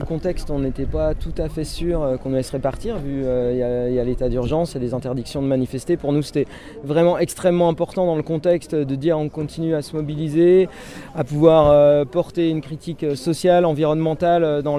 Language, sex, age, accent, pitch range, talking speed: French, male, 30-49, French, 150-175 Hz, 220 wpm